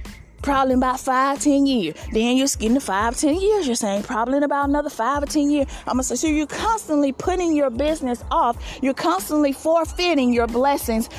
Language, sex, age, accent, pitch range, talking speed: English, female, 30-49, American, 245-320 Hz, 205 wpm